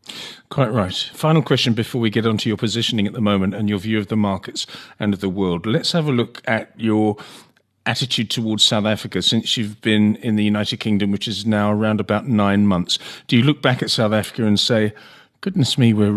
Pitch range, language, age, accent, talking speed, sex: 110-135 Hz, English, 40-59, British, 225 wpm, male